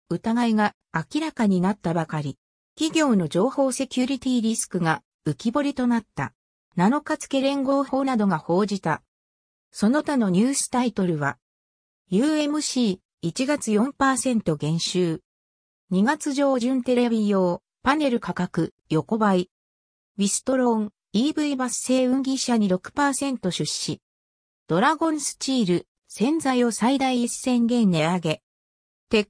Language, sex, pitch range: Japanese, female, 170-260 Hz